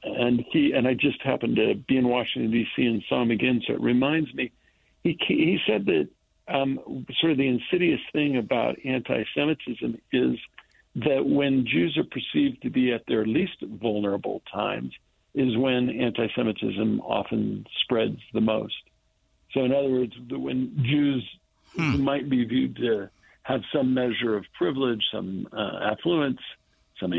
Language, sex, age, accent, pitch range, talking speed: English, male, 60-79, American, 110-135 Hz, 155 wpm